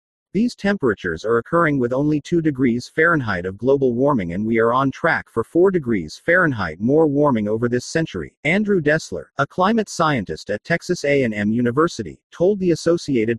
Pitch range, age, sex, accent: 120-160 Hz, 40-59, male, American